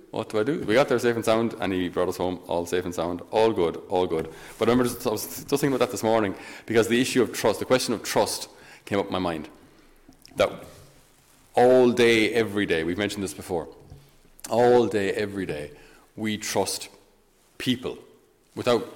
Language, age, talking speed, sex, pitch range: English, 30-49, 205 wpm, male, 100-130 Hz